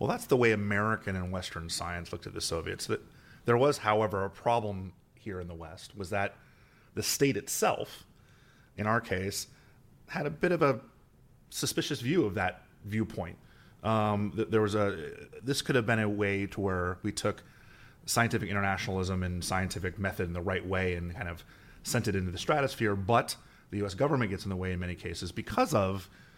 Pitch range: 90-110 Hz